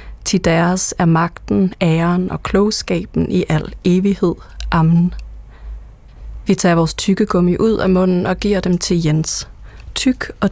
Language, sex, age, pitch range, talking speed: Danish, female, 30-49, 170-195 Hz, 145 wpm